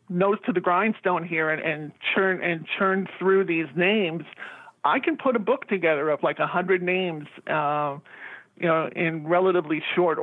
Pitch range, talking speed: 165-185 Hz, 175 wpm